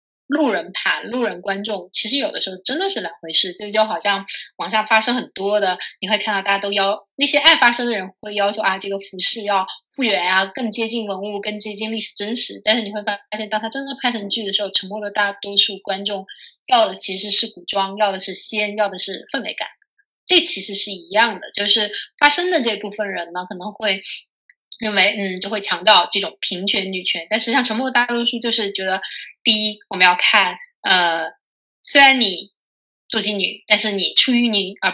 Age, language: 20-39, Chinese